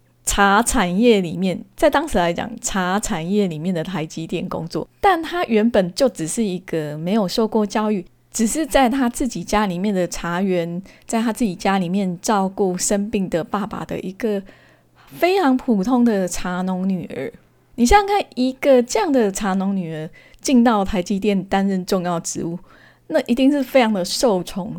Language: Chinese